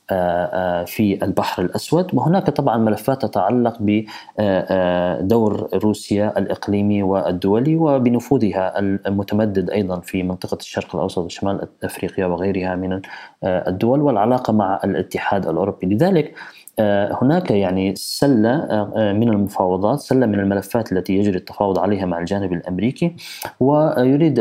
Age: 20-39